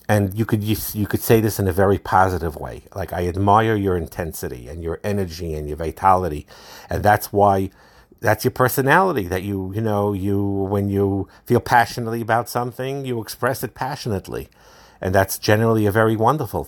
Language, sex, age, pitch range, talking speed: English, male, 50-69, 90-110 Hz, 180 wpm